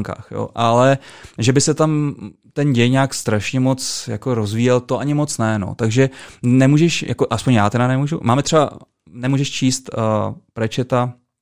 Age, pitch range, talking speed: 20-39, 120-135 Hz, 160 wpm